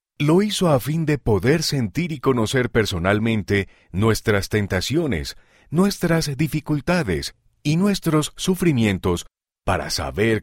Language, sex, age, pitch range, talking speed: Spanish, male, 40-59, 90-135 Hz, 110 wpm